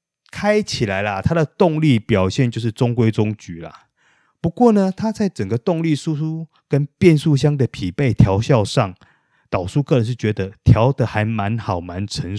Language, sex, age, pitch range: Chinese, male, 30-49, 100-135 Hz